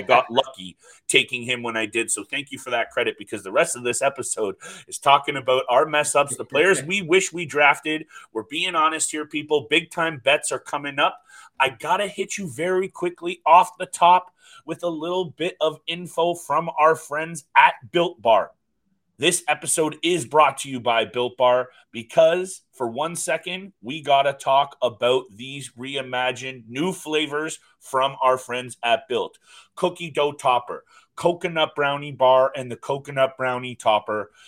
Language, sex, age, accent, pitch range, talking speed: English, male, 30-49, American, 125-160 Hz, 175 wpm